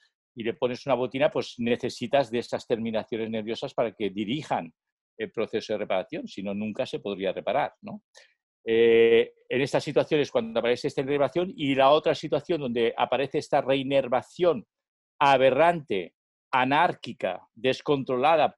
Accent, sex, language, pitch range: Spanish, male, Spanish, 115-145 Hz